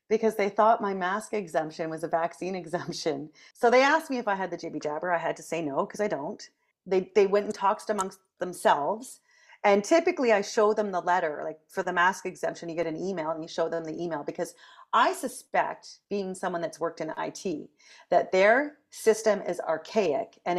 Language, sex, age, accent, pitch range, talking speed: English, female, 30-49, American, 175-250 Hz, 205 wpm